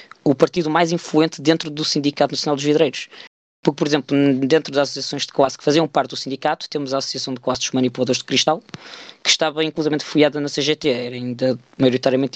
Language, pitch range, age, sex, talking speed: Portuguese, 135-160 Hz, 20-39, female, 200 wpm